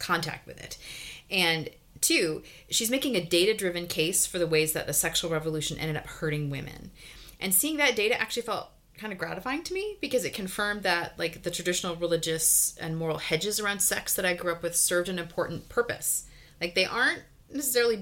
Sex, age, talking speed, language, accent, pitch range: female, 30-49, 195 wpm, English, American, 165-235 Hz